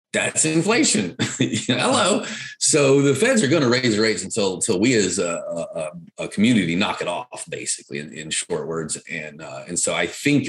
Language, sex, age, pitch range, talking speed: English, male, 30-49, 105-160 Hz, 190 wpm